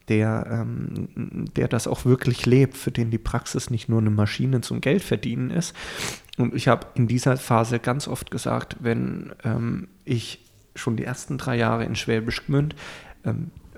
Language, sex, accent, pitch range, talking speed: German, male, German, 115-135 Hz, 165 wpm